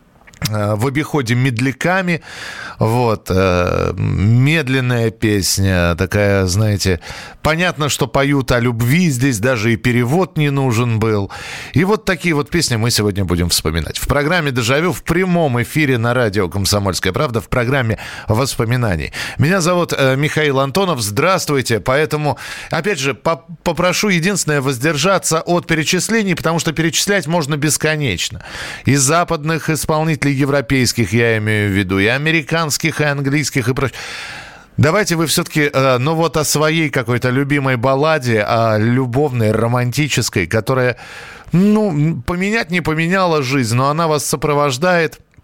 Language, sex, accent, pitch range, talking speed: Russian, male, native, 115-155 Hz, 130 wpm